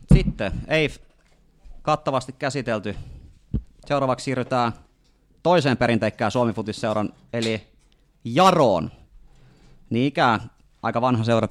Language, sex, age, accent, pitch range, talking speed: Finnish, male, 30-49, native, 100-120 Hz, 85 wpm